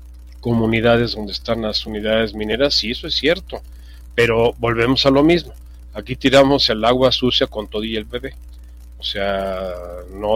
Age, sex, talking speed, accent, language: 40-59, male, 160 wpm, Mexican, Spanish